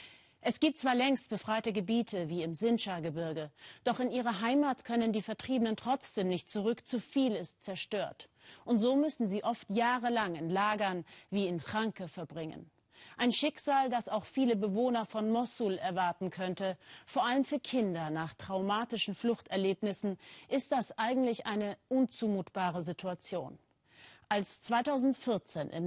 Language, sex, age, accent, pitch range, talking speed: German, female, 30-49, German, 190-245 Hz, 140 wpm